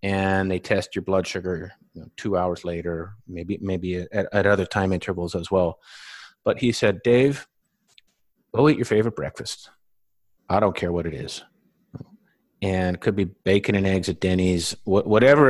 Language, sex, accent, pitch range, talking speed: English, male, American, 95-110 Hz, 180 wpm